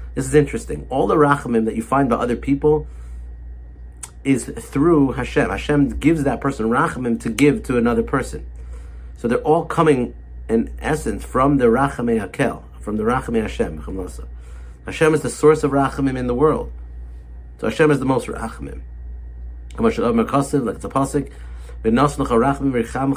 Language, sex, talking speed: English, male, 140 wpm